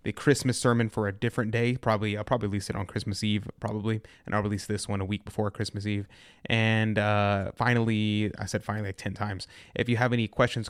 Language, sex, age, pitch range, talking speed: English, male, 20-39, 105-115 Hz, 225 wpm